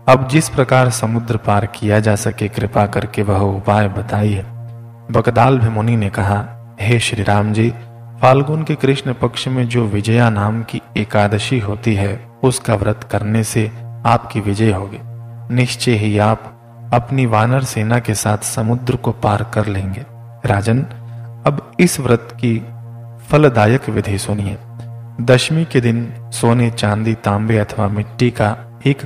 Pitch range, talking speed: 110-120 Hz, 130 wpm